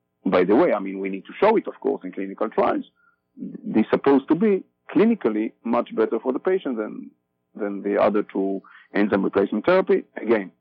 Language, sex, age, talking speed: English, male, 50-69, 200 wpm